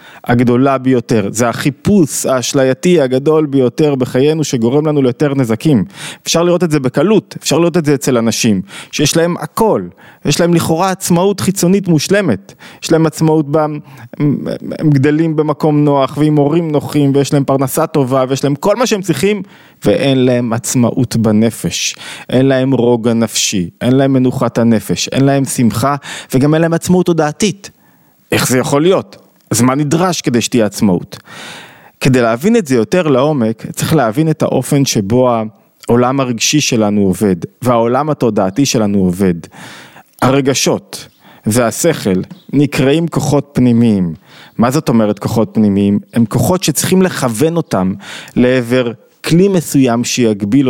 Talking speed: 135 wpm